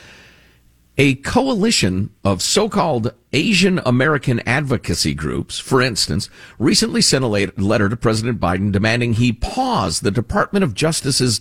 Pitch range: 95-140 Hz